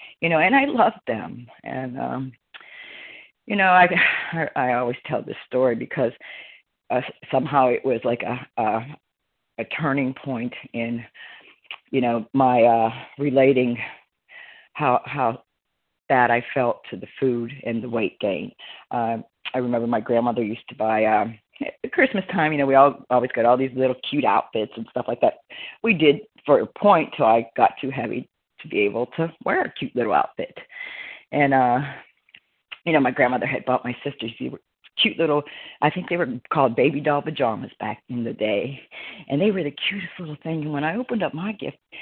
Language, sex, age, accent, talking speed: English, female, 40-59, American, 190 wpm